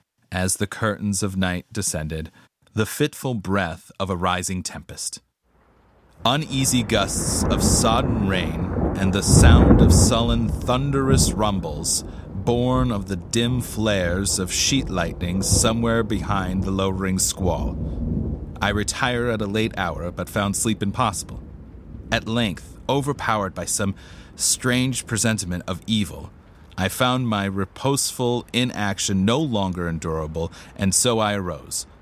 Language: English